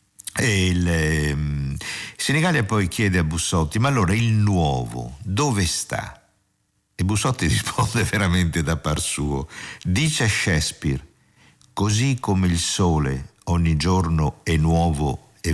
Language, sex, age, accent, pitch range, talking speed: Italian, male, 50-69, native, 80-105 Hz, 125 wpm